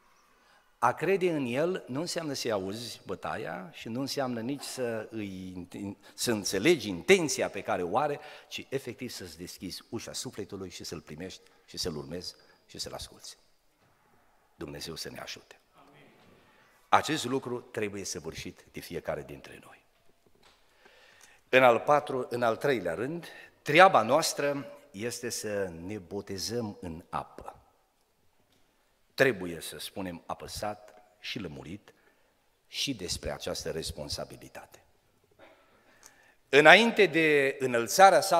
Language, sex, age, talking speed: Romanian, male, 50-69, 120 wpm